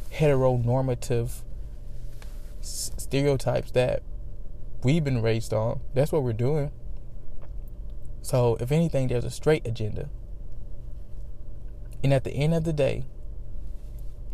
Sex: male